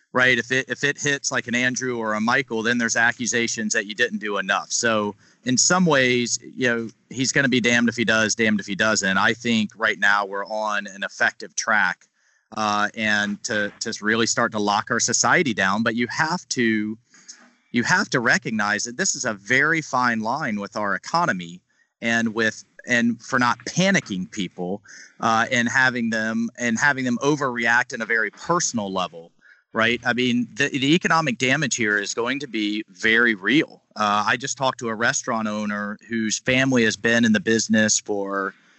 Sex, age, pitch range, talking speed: male, 40-59, 105-130 Hz, 195 wpm